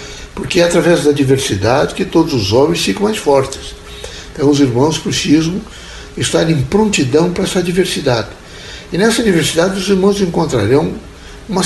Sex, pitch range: male, 135-175 Hz